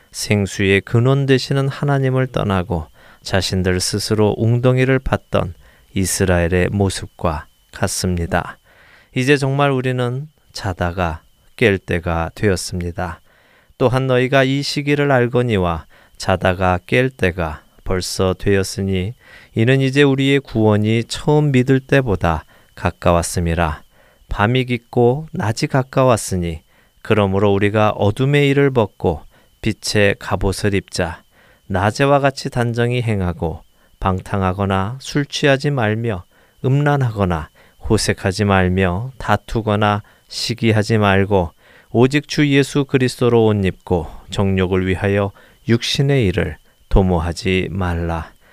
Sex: male